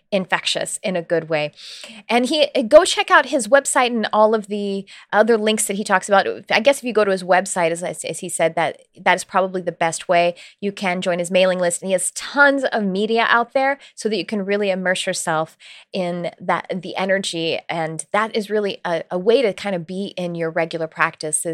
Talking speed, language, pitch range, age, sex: 225 wpm, English, 175-220 Hz, 20-39, female